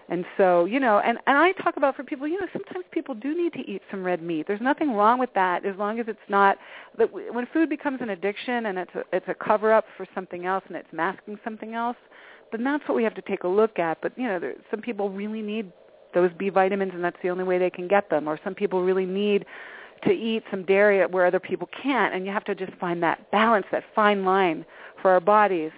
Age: 40-59